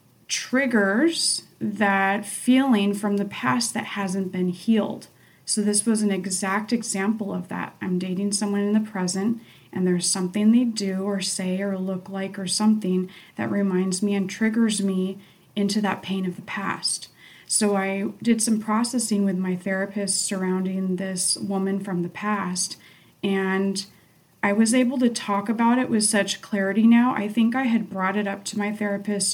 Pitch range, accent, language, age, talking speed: 190-225 Hz, American, English, 30-49, 170 wpm